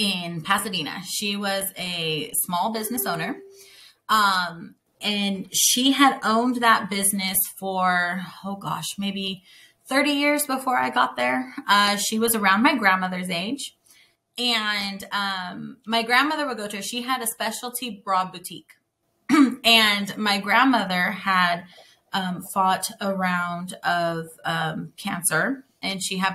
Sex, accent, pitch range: female, American, 180-230 Hz